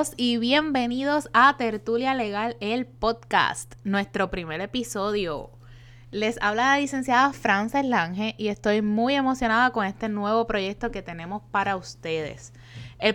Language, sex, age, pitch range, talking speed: Spanish, female, 20-39, 180-235 Hz, 130 wpm